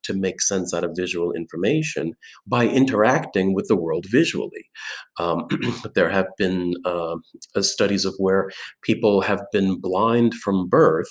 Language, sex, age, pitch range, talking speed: English, male, 40-59, 90-125 Hz, 140 wpm